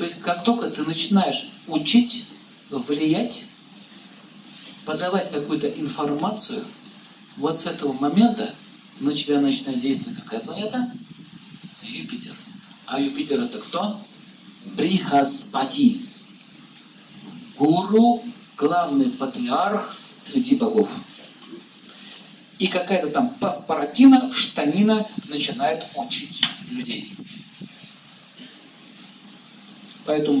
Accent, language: native, Russian